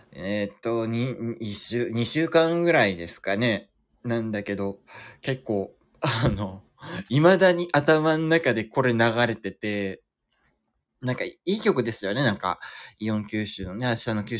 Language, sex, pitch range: Japanese, male, 105-125 Hz